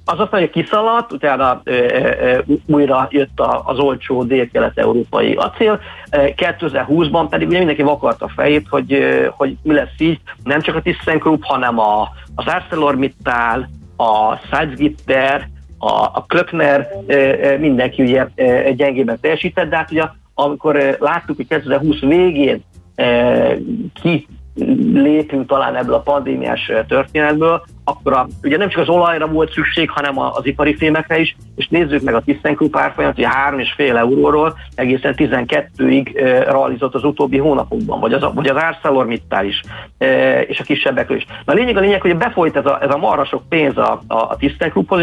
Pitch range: 125-160 Hz